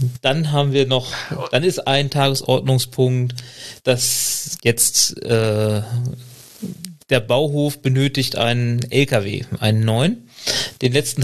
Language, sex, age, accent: German, male, 30-49, German